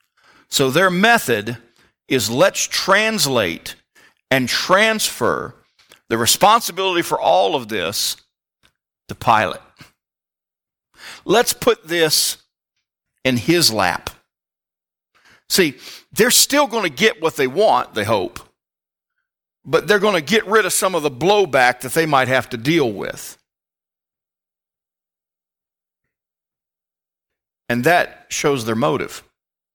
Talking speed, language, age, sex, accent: 115 wpm, English, 50-69, male, American